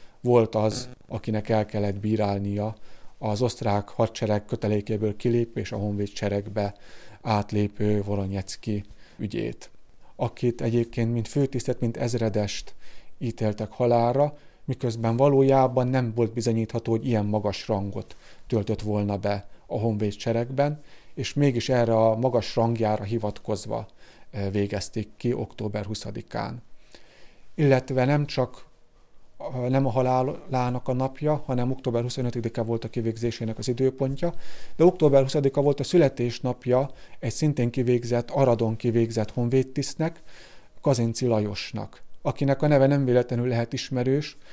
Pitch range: 110-130 Hz